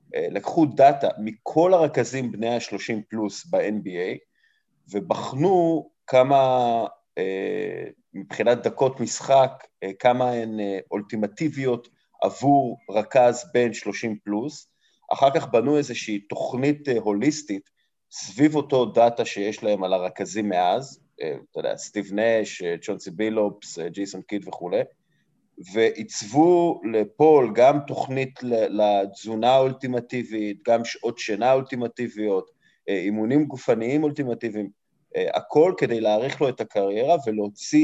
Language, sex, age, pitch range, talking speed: Hebrew, male, 30-49, 105-140 Hz, 100 wpm